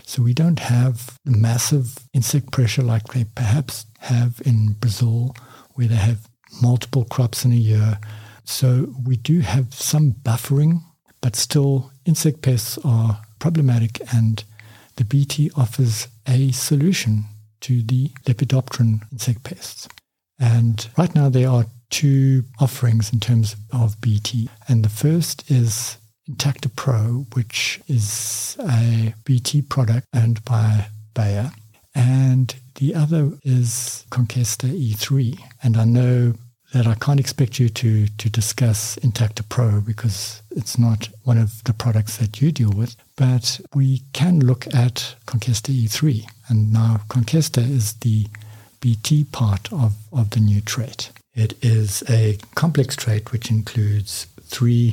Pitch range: 110-130 Hz